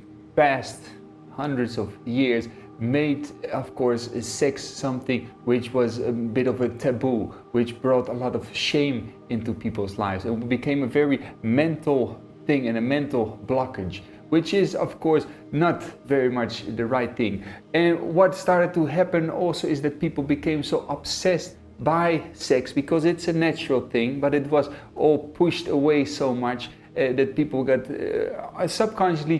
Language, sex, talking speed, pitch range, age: English, male, 160 wpm, 110-145 Hz, 40-59